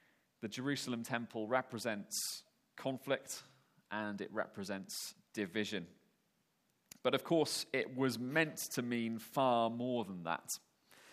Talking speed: 115 wpm